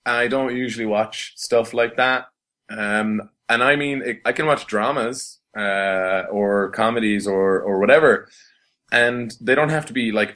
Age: 20-39